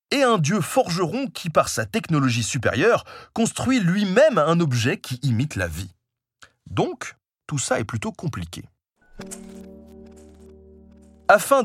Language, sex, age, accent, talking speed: French, male, 30-49, French, 125 wpm